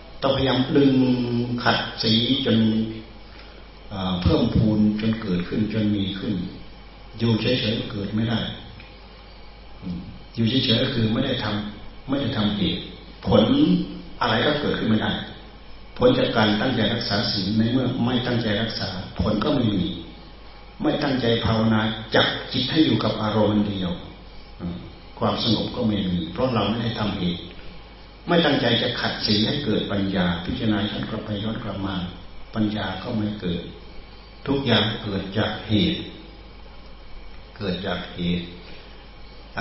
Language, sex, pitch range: Thai, male, 95-110 Hz